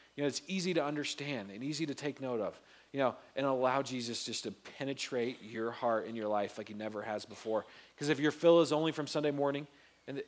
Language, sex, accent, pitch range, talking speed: English, male, American, 125-160 Hz, 235 wpm